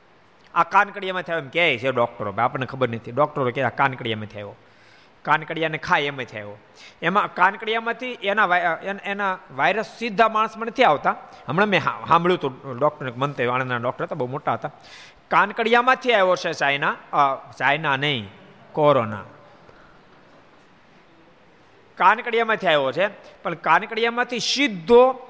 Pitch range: 120-190 Hz